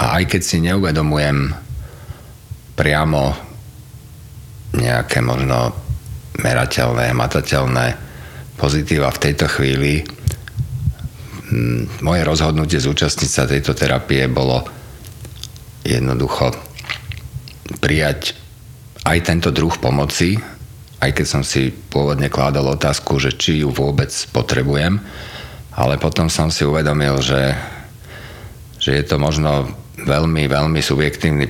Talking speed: 100 wpm